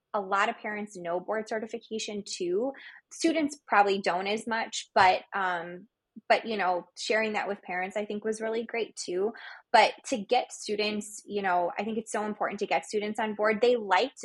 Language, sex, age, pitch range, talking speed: English, female, 20-39, 180-220 Hz, 195 wpm